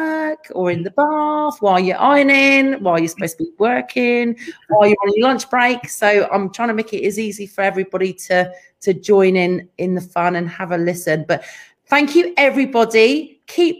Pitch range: 190-250 Hz